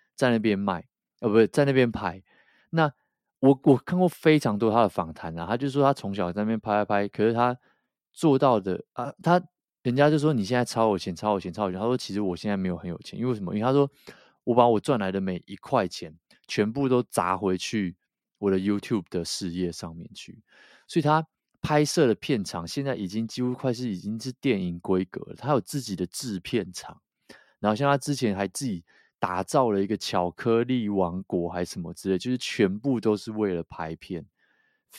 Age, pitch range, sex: 20-39, 95-125 Hz, male